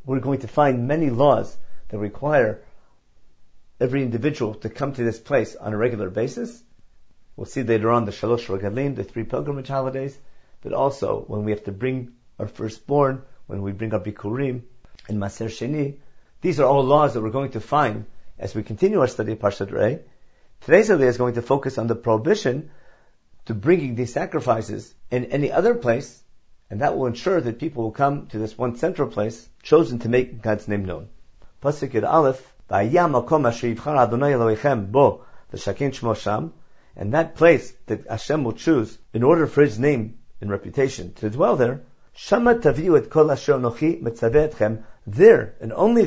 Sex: male